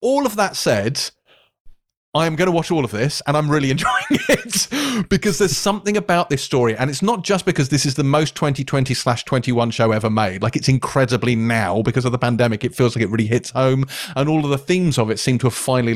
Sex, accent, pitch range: male, British, 120-155 Hz